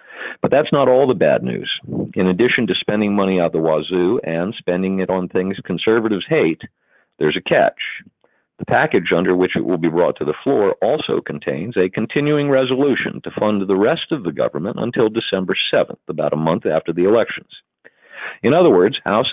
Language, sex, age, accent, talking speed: English, male, 50-69, American, 190 wpm